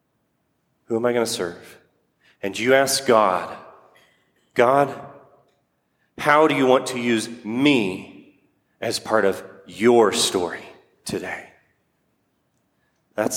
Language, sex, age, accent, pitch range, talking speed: English, male, 40-59, American, 115-140 Hz, 110 wpm